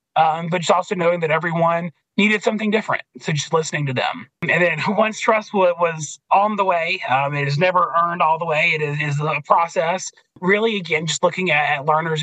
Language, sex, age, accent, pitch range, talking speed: English, male, 30-49, American, 155-195 Hz, 200 wpm